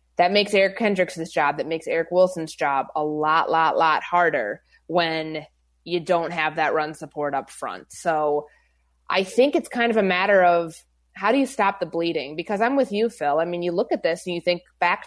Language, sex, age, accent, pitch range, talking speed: English, female, 20-39, American, 155-190 Hz, 215 wpm